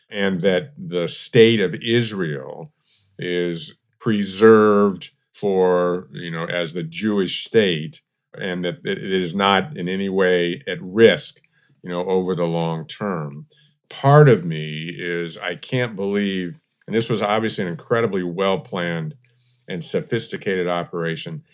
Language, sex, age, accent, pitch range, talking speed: English, male, 50-69, American, 80-100 Hz, 135 wpm